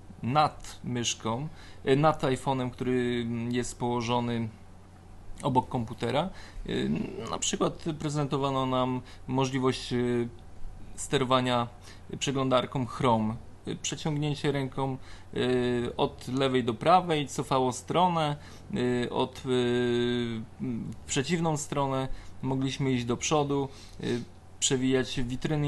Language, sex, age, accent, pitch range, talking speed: Polish, male, 20-39, native, 120-145 Hz, 80 wpm